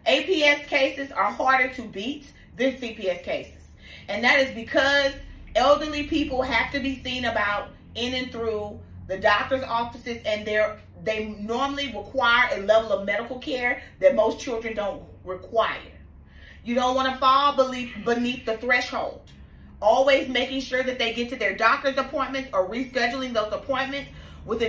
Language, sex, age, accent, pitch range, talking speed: English, female, 30-49, American, 225-270 Hz, 150 wpm